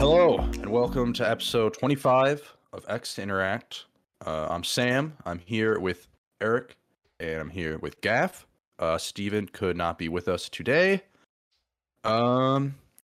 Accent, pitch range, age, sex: American, 90-120 Hz, 20-39, male